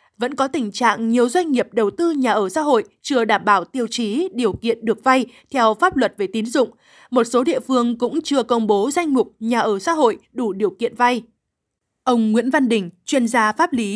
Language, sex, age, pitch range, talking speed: Vietnamese, female, 20-39, 215-270 Hz, 230 wpm